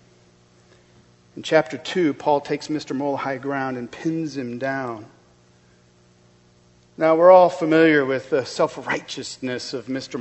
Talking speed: 130 wpm